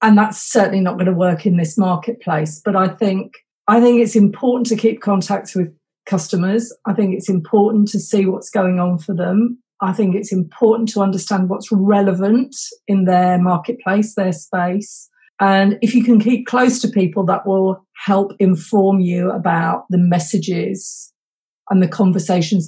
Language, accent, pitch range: English, British, 185-220 Hz